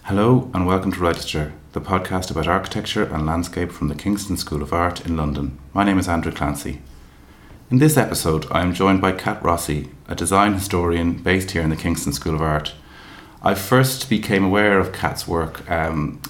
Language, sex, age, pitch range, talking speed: English, male, 30-49, 80-95 Hz, 190 wpm